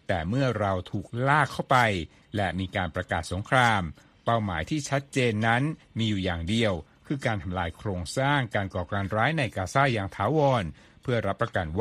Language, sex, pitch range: Thai, male, 100-130 Hz